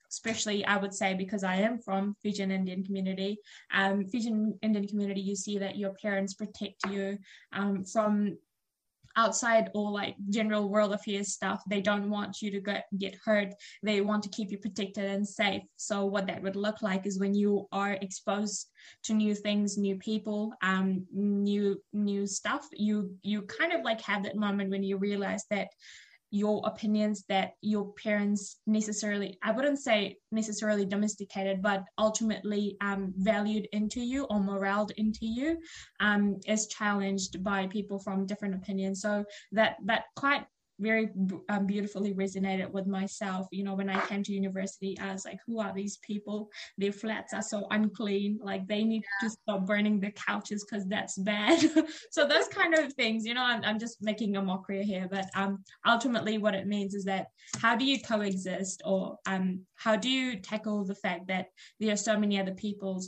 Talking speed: 180 wpm